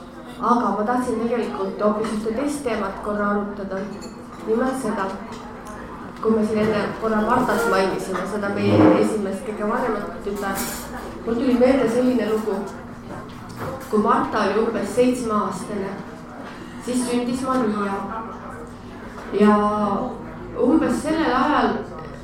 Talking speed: 120 wpm